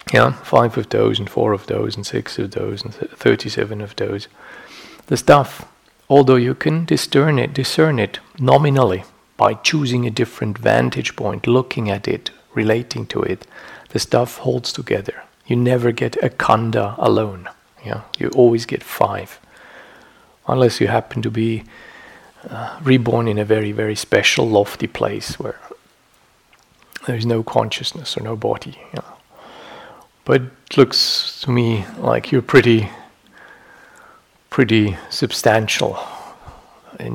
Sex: male